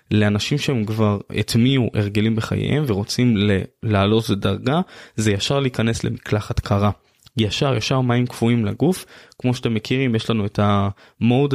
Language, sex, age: Hebrew, male, 20-39